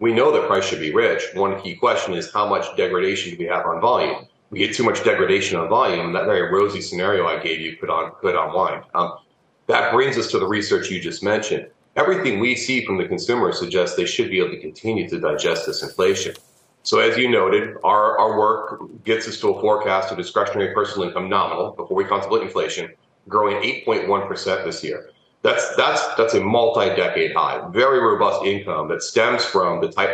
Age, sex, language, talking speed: 30-49, male, English, 205 wpm